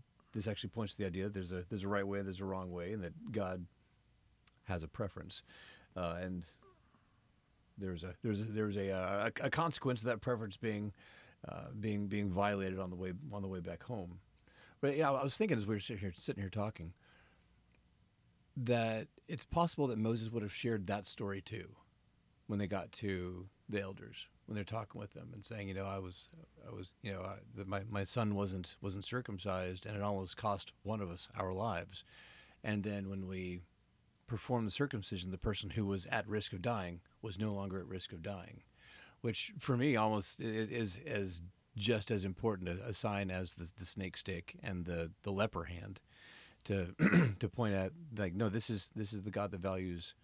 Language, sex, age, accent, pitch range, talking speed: English, male, 40-59, American, 95-110 Hz, 205 wpm